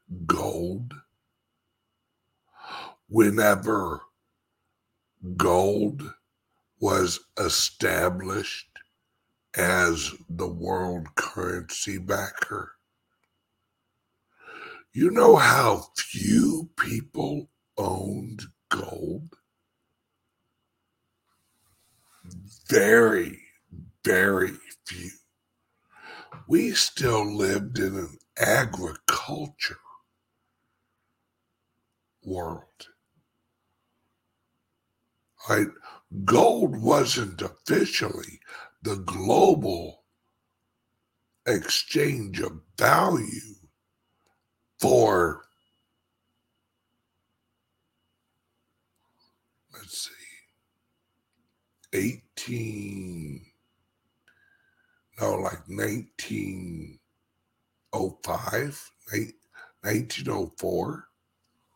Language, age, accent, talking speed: English, 60-79, American, 45 wpm